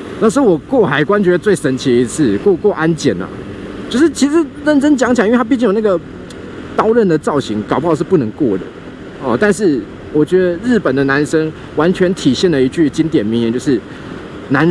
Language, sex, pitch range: Chinese, male, 130-205 Hz